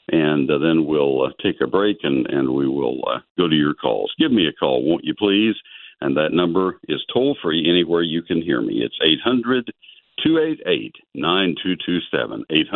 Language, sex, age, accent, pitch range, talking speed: English, male, 60-79, American, 80-120 Hz, 170 wpm